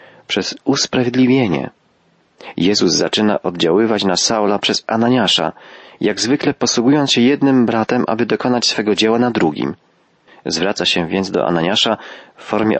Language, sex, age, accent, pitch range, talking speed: Polish, male, 40-59, native, 95-130 Hz, 130 wpm